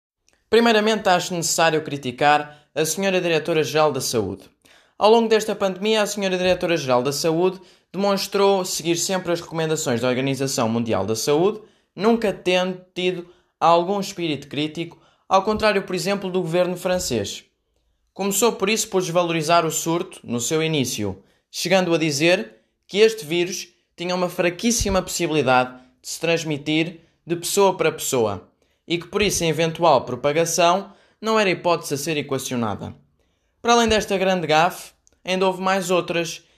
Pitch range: 150-190 Hz